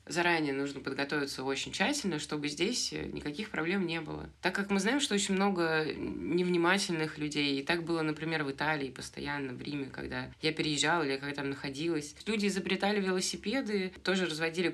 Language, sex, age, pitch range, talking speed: Russian, female, 20-39, 135-175 Hz, 165 wpm